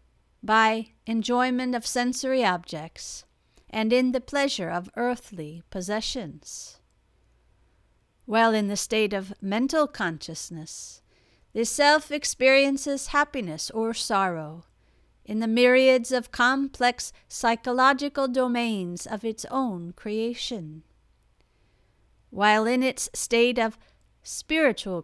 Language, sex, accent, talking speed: English, female, American, 100 wpm